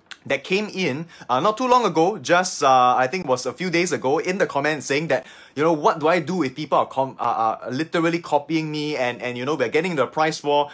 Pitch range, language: 130-175 Hz, English